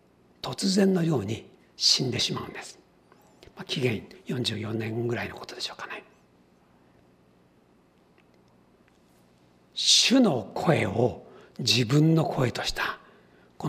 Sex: male